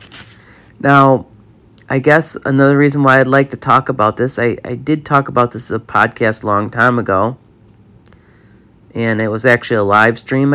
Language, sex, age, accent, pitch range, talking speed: English, male, 40-59, American, 110-145 Hz, 180 wpm